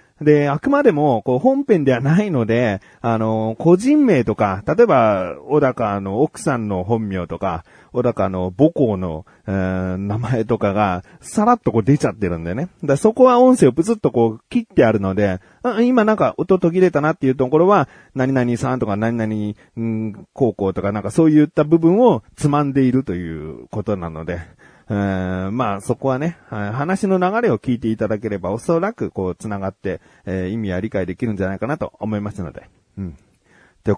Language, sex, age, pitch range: Japanese, male, 30-49, 100-150 Hz